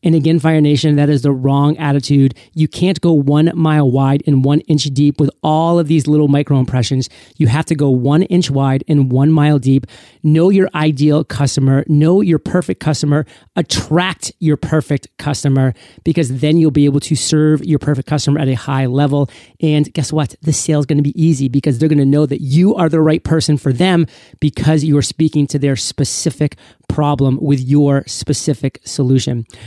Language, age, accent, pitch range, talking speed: English, 30-49, American, 140-165 Hz, 190 wpm